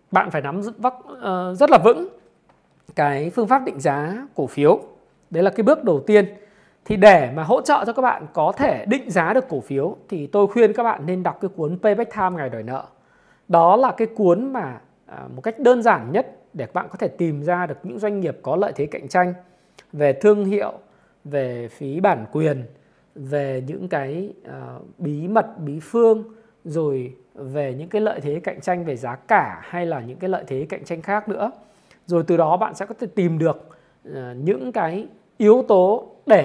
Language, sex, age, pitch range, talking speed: Vietnamese, male, 20-39, 155-210 Hz, 200 wpm